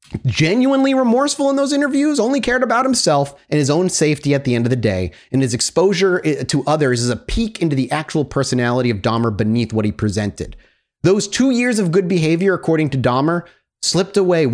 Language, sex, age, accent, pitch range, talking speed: English, male, 30-49, American, 125-175 Hz, 200 wpm